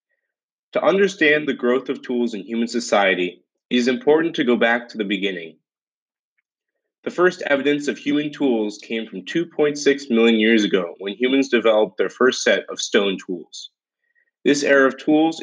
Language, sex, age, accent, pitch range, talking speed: English, male, 30-49, American, 115-155 Hz, 165 wpm